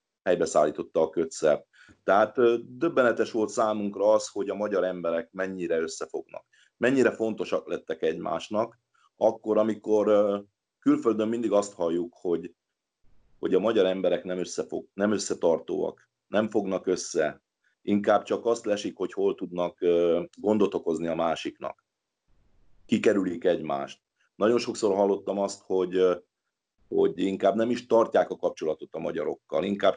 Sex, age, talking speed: male, 30-49, 125 wpm